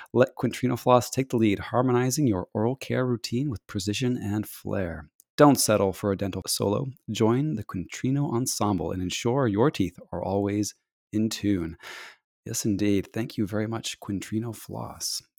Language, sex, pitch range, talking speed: English, male, 100-120 Hz, 160 wpm